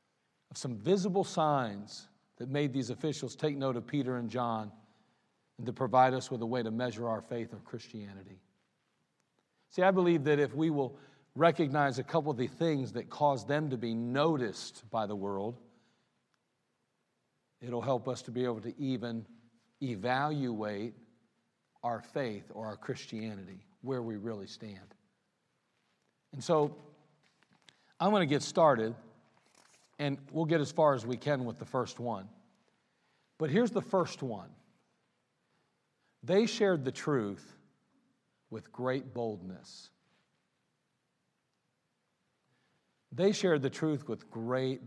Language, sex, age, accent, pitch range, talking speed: English, male, 50-69, American, 115-150 Hz, 140 wpm